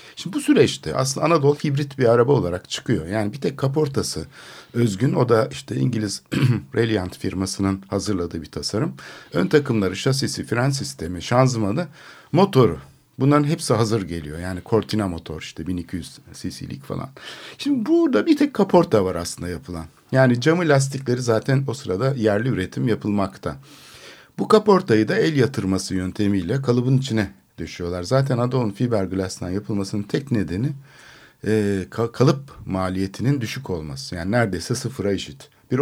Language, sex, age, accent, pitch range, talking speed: Turkish, male, 60-79, native, 95-135 Hz, 140 wpm